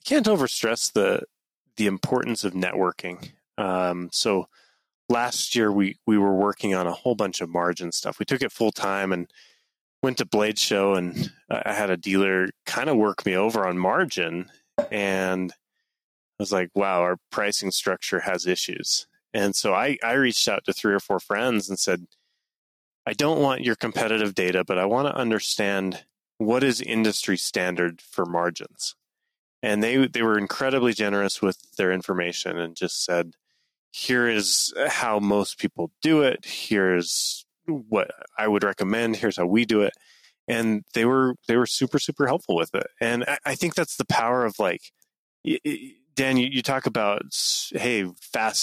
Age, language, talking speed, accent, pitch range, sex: 30-49, English, 170 wpm, American, 95-115 Hz, male